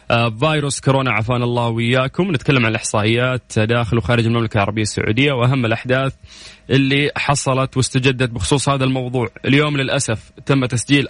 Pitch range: 115-135 Hz